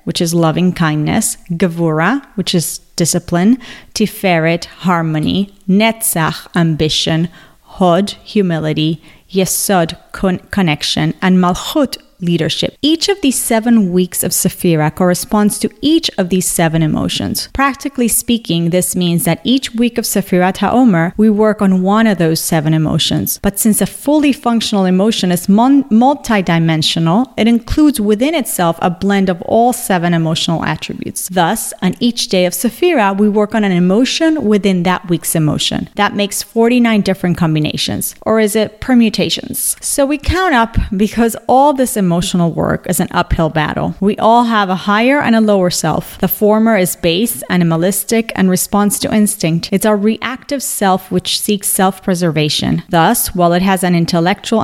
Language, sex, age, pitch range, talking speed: English, female, 30-49, 175-225 Hz, 155 wpm